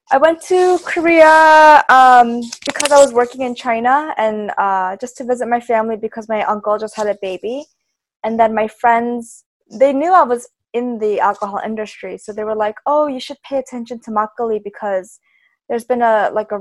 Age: 20-39